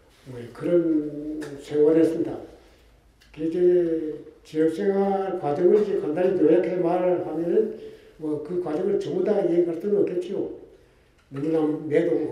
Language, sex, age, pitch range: Korean, male, 60-79, 160-225 Hz